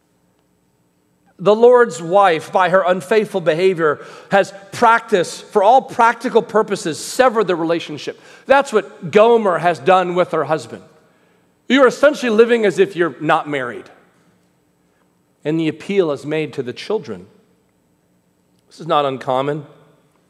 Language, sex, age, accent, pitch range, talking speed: English, male, 40-59, American, 150-205 Hz, 130 wpm